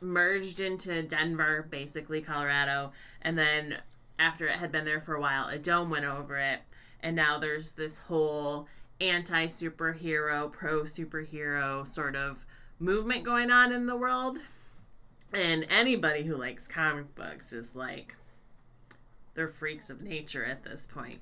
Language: English